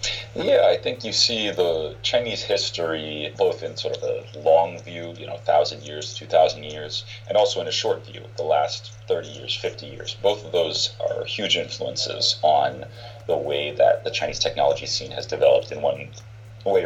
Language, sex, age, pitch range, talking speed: English, male, 30-49, 110-120 Hz, 190 wpm